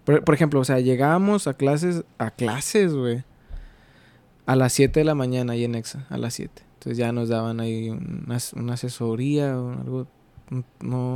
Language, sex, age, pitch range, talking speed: Spanish, male, 20-39, 125-145 Hz, 175 wpm